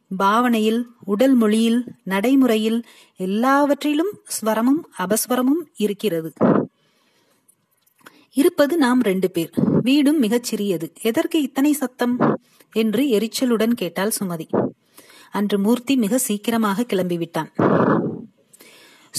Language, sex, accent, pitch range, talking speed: Tamil, female, native, 200-255 Hz, 80 wpm